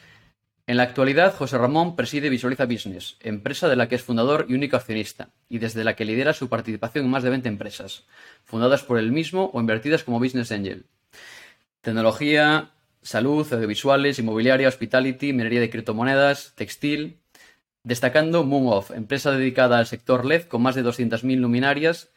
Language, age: Spanish, 20-39